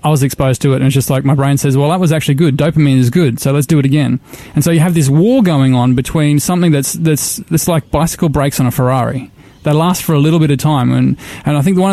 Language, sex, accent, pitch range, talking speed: English, male, Australian, 135-160 Hz, 285 wpm